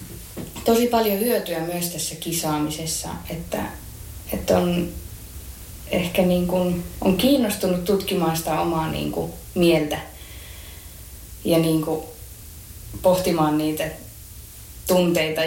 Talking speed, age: 95 wpm, 20-39